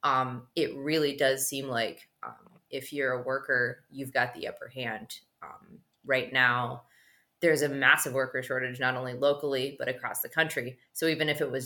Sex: female